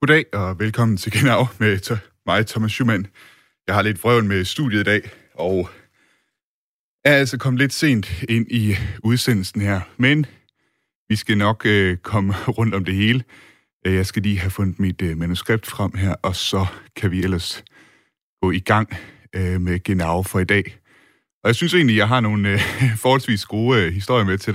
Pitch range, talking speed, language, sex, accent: 95-115 Hz, 175 wpm, Danish, male, native